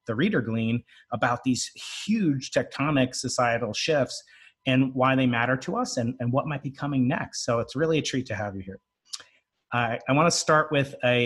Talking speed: 205 wpm